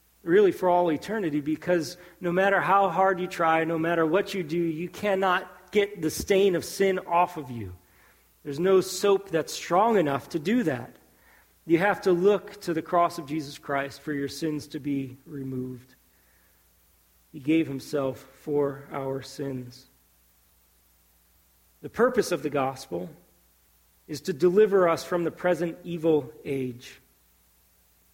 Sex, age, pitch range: male, 40-59, 125-185 Hz